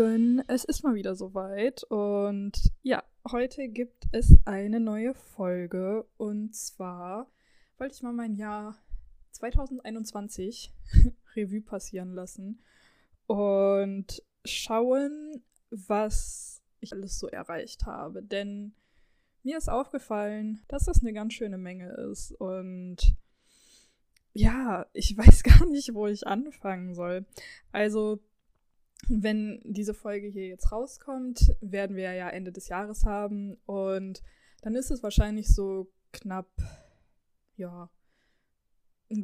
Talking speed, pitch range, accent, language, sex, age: 115 wpm, 190-235 Hz, German, German, female, 20-39